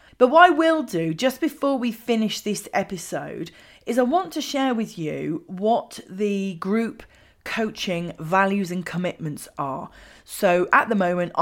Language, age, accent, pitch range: English, 30-49, British, 170-220 Hz